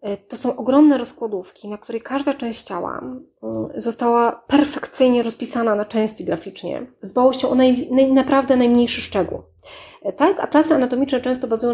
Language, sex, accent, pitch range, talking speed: Polish, female, native, 215-255 Hz, 145 wpm